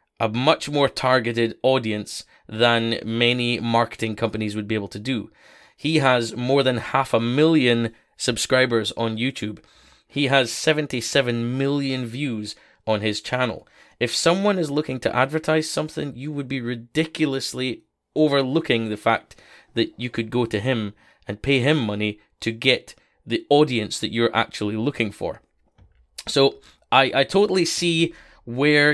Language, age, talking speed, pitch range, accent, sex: English, 20-39, 145 wpm, 115-145 Hz, British, male